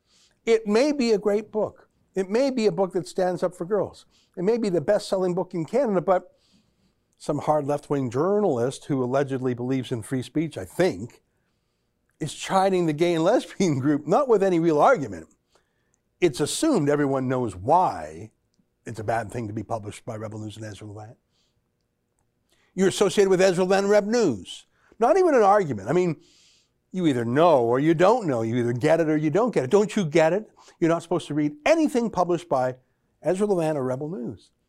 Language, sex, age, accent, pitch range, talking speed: English, male, 60-79, American, 125-195 Hz, 195 wpm